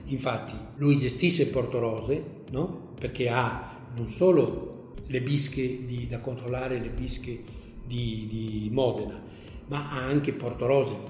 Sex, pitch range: male, 120-150 Hz